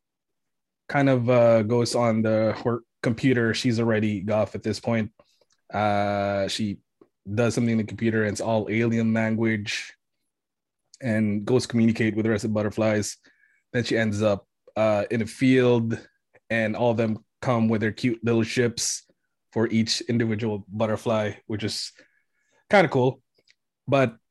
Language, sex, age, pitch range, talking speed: English, male, 20-39, 110-125 Hz, 160 wpm